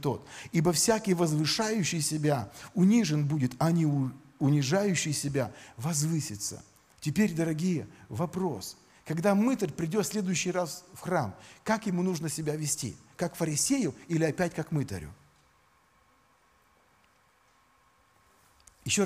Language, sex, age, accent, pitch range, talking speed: Russian, male, 40-59, native, 140-195 Hz, 105 wpm